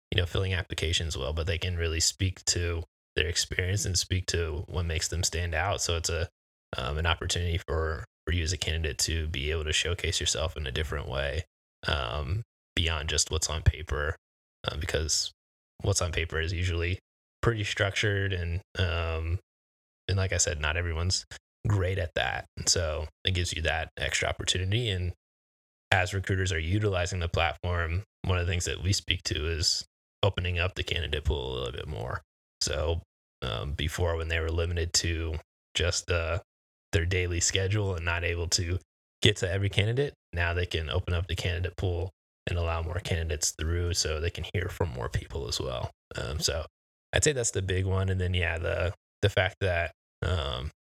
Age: 20-39